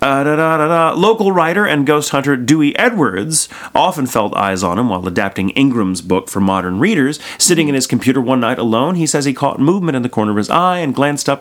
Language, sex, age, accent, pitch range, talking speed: English, male, 30-49, American, 105-160 Hz, 215 wpm